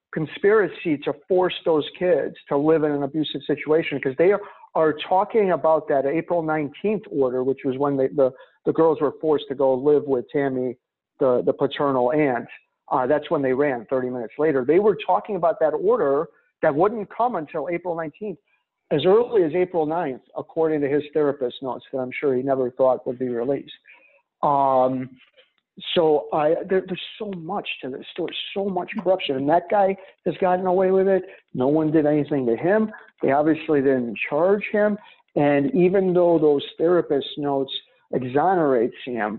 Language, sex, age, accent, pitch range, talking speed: English, male, 50-69, American, 135-185 Hz, 180 wpm